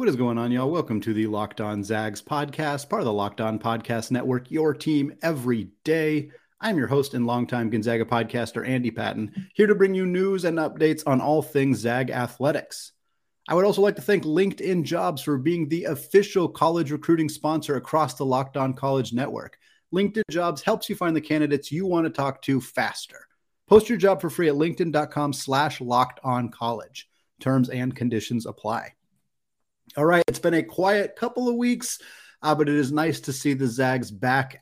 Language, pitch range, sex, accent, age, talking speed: English, 120-155 Hz, male, American, 30-49, 190 wpm